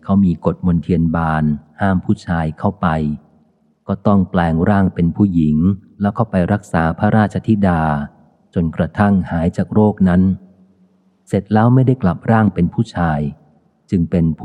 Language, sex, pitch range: Thai, male, 85-105 Hz